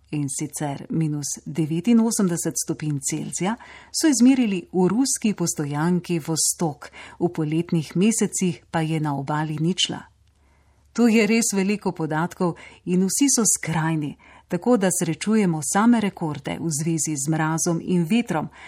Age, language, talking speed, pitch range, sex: 40-59, Italian, 130 wpm, 155-200 Hz, female